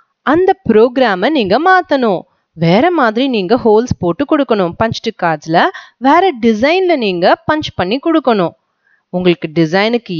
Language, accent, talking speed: Tamil, native, 120 wpm